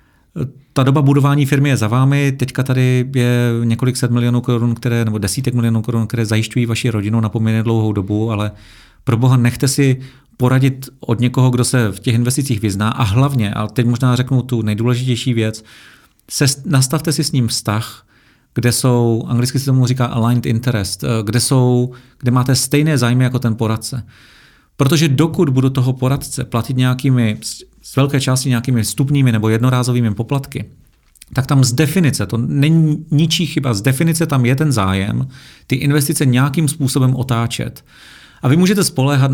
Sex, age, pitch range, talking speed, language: male, 40-59, 115-135 Hz, 165 wpm, Czech